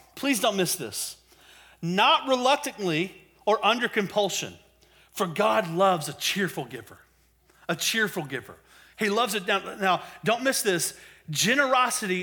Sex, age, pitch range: male, 30-49, 165-220 Hz